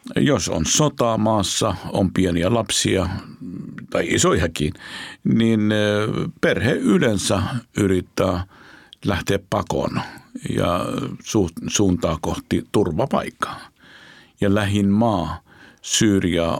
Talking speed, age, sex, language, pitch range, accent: 85 wpm, 50-69, male, Finnish, 85-105 Hz, native